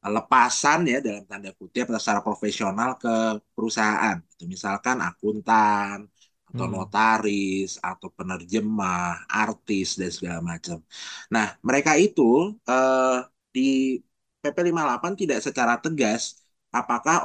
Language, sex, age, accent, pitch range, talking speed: Indonesian, male, 20-39, native, 100-130 Hz, 100 wpm